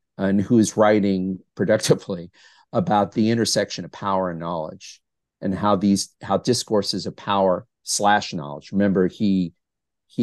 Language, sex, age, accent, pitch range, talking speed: English, male, 50-69, American, 95-125 Hz, 140 wpm